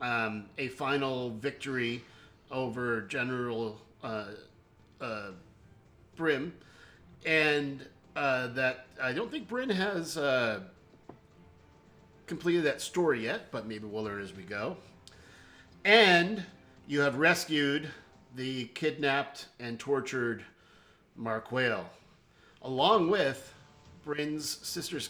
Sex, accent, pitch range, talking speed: male, American, 115-150 Hz, 100 wpm